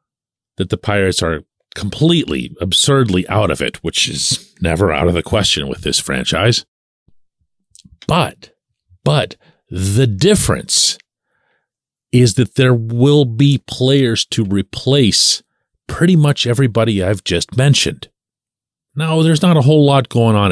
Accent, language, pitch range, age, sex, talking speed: American, English, 85-130 Hz, 40-59, male, 130 wpm